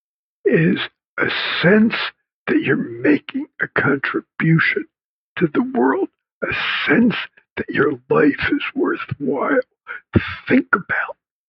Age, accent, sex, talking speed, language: 60-79, American, male, 105 wpm, English